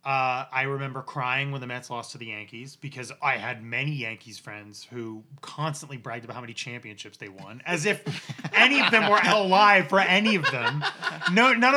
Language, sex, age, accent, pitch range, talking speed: English, male, 20-39, American, 130-190 Hz, 200 wpm